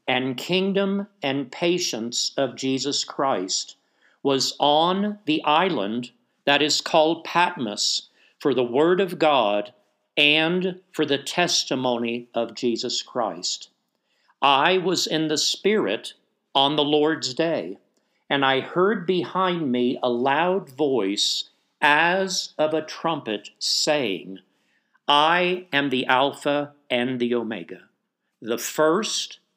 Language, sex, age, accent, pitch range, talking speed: English, male, 50-69, American, 130-180 Hz, 120 wpm